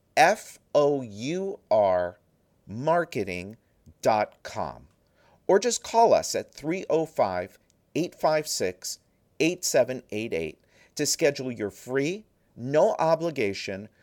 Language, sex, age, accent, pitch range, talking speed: English, male, 50-69, American, 120-185 Hz, 60 wpm